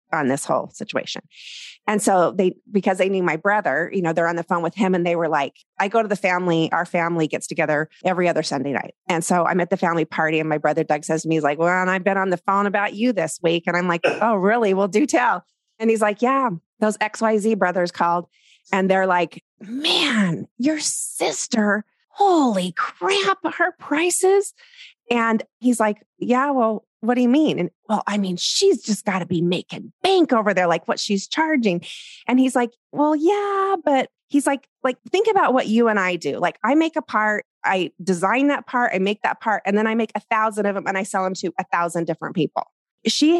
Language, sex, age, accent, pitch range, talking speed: English, female, 30-49, American, 180-250 Hz, 225 wpm